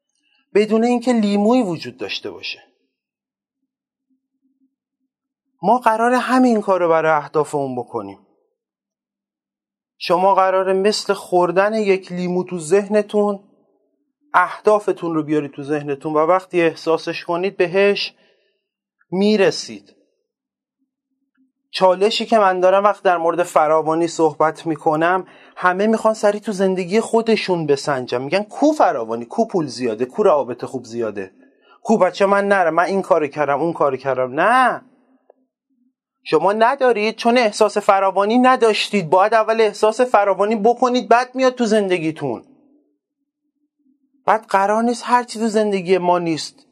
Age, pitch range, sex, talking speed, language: 30-49, 175-250 Hz, male, 120 wpm, Persian